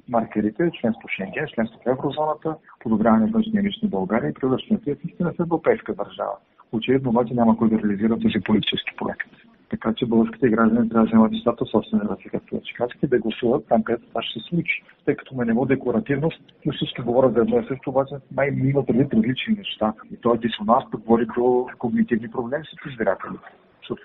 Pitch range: 115-160 Hz